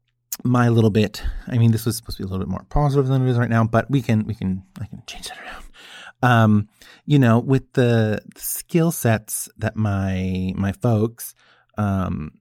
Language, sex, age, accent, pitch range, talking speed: English, male, 30-49, American, 100-125 Hz, 205 wpm